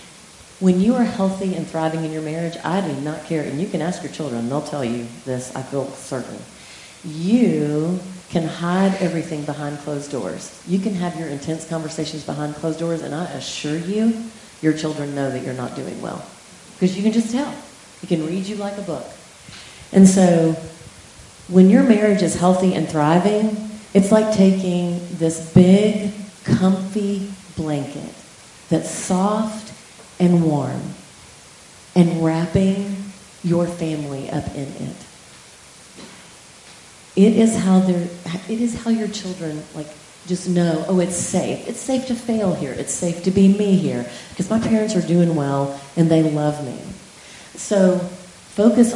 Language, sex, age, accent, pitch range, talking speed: English, female, 40-59, American, 160-200 Hz, 160 wpm